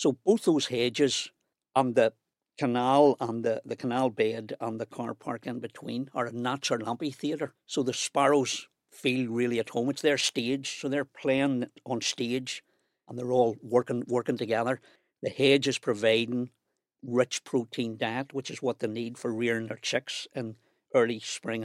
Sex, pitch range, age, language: male, 120-140 Hz, 60-79, English